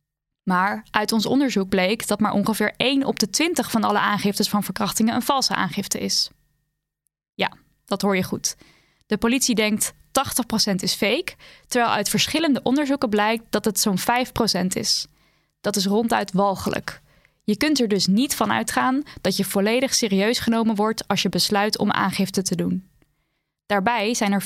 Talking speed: 170 wpm